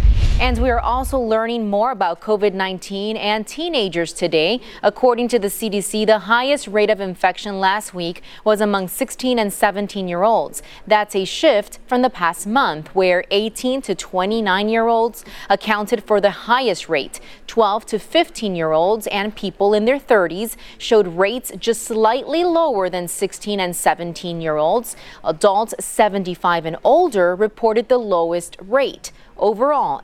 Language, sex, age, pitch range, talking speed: English, female, 20-39, 185-235 Hz, 155 wpm